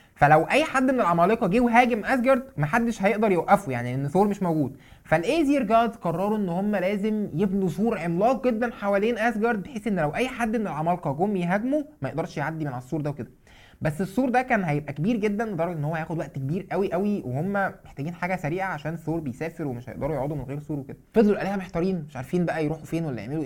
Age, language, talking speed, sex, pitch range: 20-39, Arabic, 210 wpm, male, 155-230 Hz